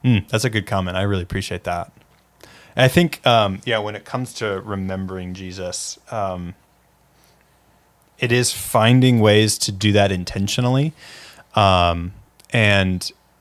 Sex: male